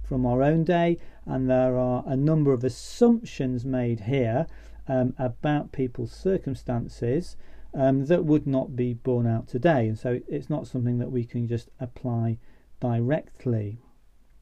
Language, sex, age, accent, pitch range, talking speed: English, male, 40-59, British, 115-140 Hz, 150 wpm